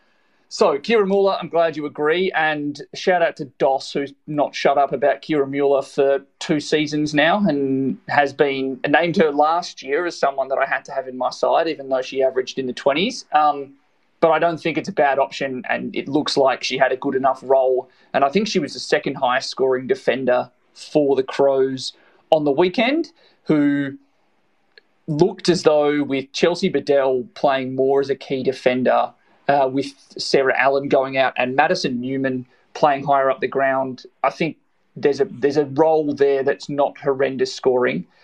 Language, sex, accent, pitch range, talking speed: English, male, Australian, 135-160 Hz, 190 wpm